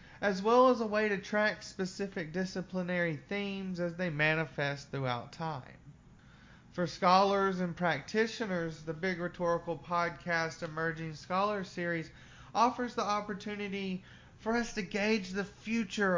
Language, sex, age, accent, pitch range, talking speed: English, male, 30-49, American, 140-190 Hz, 130 wpm